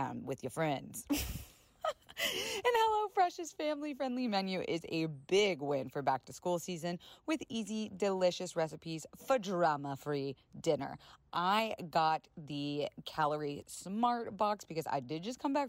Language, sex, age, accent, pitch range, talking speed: English, female, 30-49, American, 150-225 Hz, 130 wpm